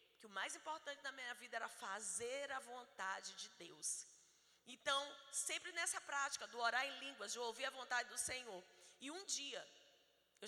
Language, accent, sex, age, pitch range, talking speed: Portuguese, Brazilian, female, 20-39, 220-295 Hz, 180 wpm